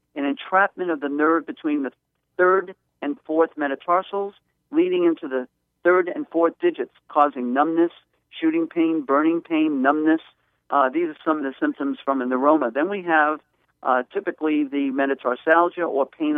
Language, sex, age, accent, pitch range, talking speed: English, male, 50-69, American, 140-200 Hz, 160 wpm